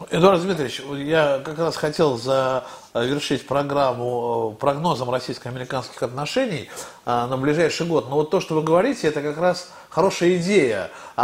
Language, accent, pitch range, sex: Russian, native, 140-180 Hz, male